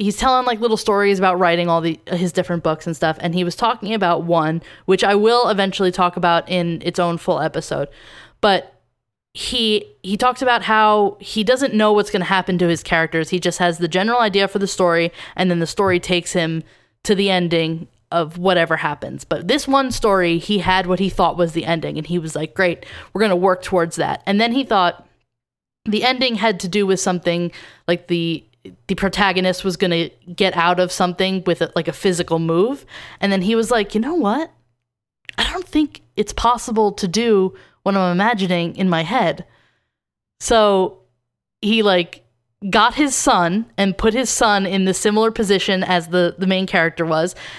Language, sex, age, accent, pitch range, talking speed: English, female, 10-29, American, 170-210 Hz, 200 wpm